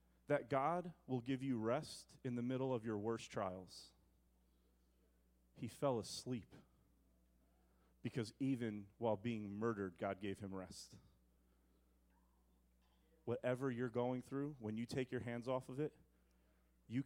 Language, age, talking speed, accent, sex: English, 30-49, 135 wpm, American, male